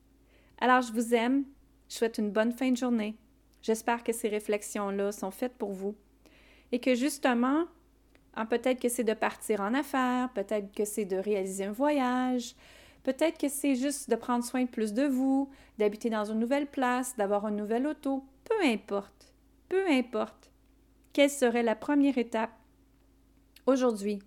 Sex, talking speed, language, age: female, 165 wpm, French, 30-49